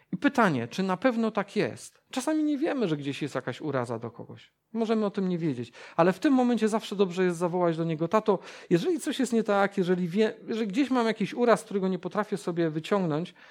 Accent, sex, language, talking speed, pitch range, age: native, male, Polish, 220 wpm, 145-205 Hz, 40-59